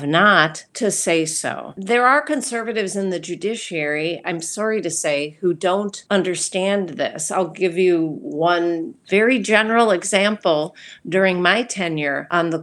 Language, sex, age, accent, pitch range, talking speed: English, female, 40-59, American, 160-205 Hz, 145 wpm